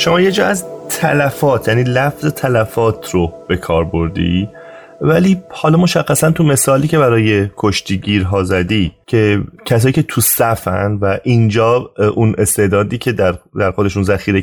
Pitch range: 95-120 Hz